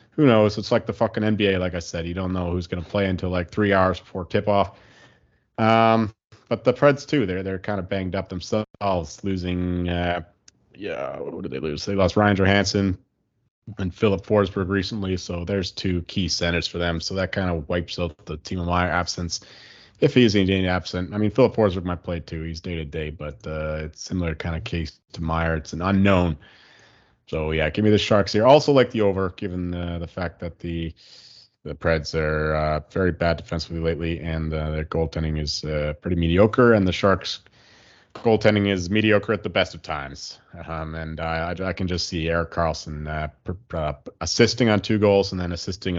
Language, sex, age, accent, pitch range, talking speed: English, male, 30-49, American, 80-100 Hz, 205 wpm